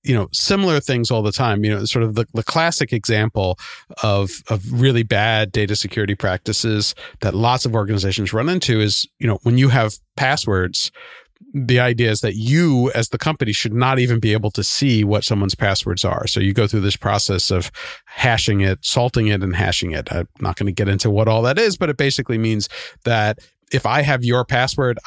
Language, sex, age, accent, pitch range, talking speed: English, male, 40-59, American, 105-130 Hz, 210 wpm